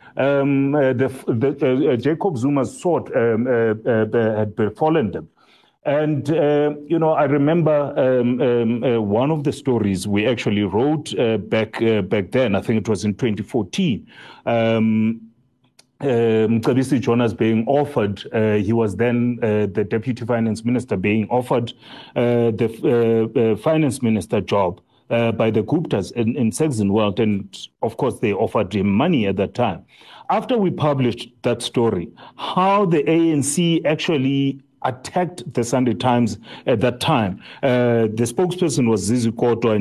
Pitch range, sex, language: 110-145 Hz, male, English